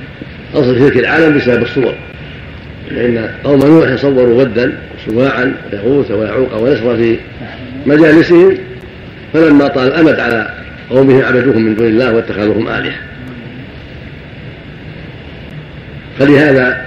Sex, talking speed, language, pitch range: male, 100 wpm, Arabic, 115-135 Hz